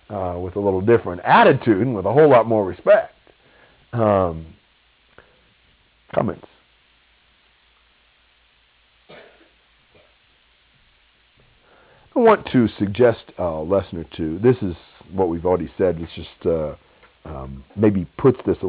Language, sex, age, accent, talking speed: English, male, 50-69, American, 120 wpm